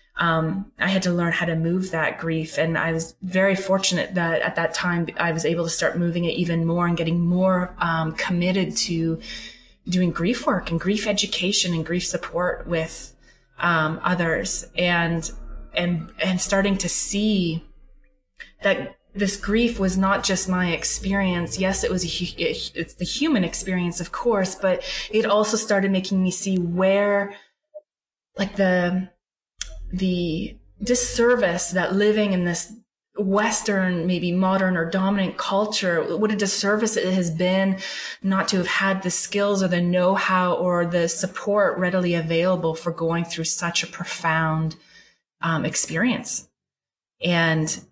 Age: 20-39